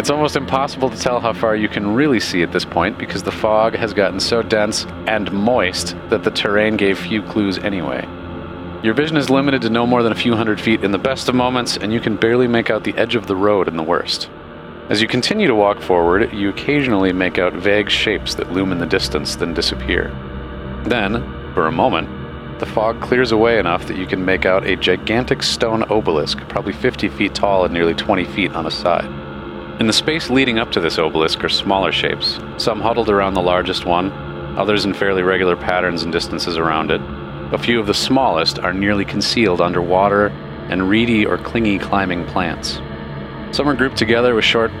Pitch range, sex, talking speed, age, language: 90-110 Hz, male, 210 wpm, 40-59, English